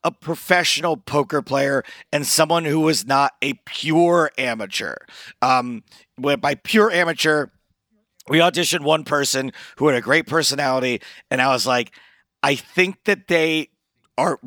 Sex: male